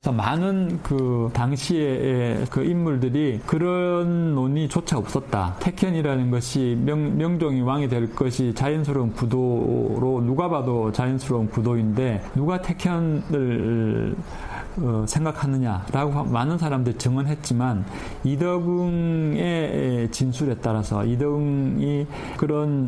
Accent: native